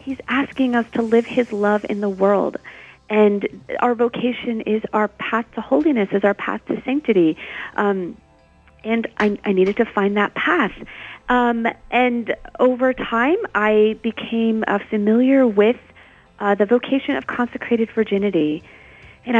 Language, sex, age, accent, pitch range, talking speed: English, female, 40-59, American, 200-240 Hz, 150 wpm